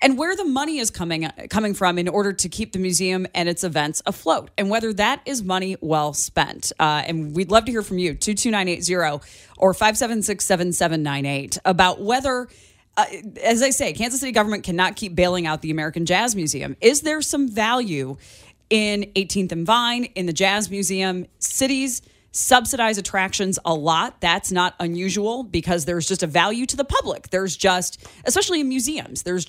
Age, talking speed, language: 30-49, 175 wpm, English